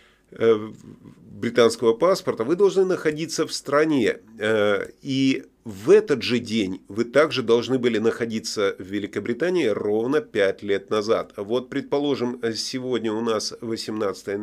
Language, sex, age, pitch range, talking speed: Russian, male, 30-49, 105-140 Hz, 120 wpm